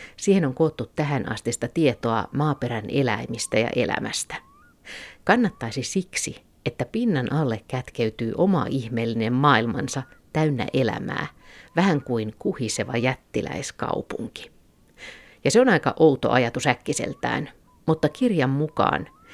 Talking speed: 110 wpm